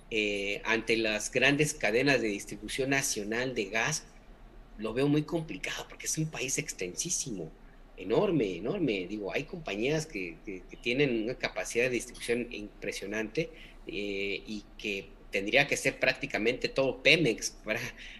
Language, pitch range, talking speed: Spanish, 110-140 Hz, 140 wpm